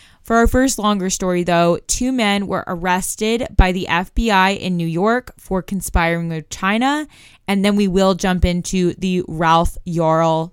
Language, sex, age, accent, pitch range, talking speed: English, female, 20-39, American, 175-225 Hz, 165 wpm